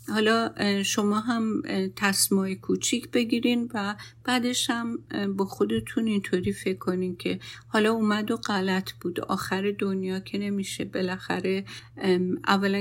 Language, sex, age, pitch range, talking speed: Persian, female, 50-69, 175-205 Hz, 120 wpm